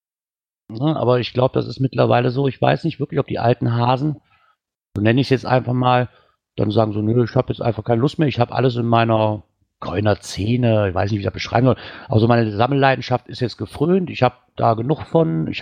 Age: 50-69